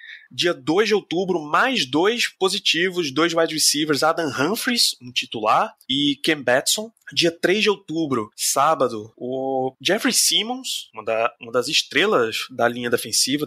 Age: 20-39